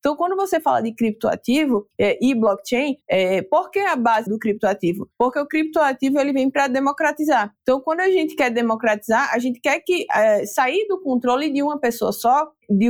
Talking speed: 195 wpm